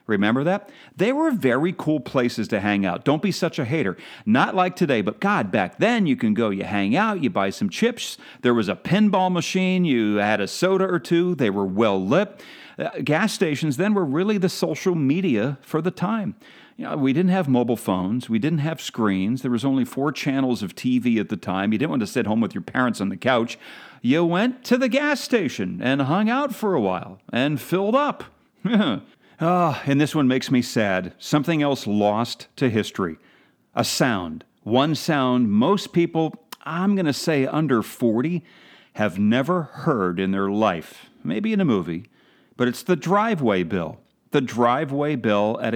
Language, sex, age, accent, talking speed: English, male, 40-59, American, 190 wpm